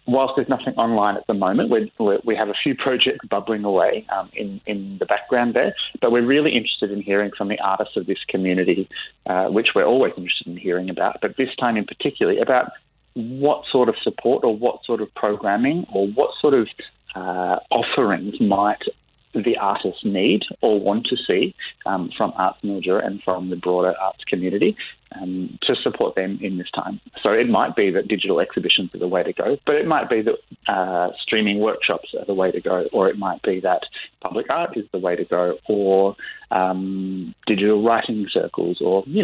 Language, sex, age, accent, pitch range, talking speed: English, male, 30-49, Australian, 95-125 Hz, 200 wpm